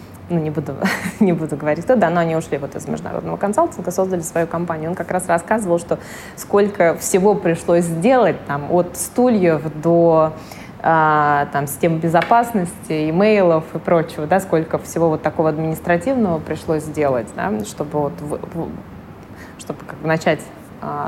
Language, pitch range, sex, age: Russian, 155-175 Hz, female, 20-39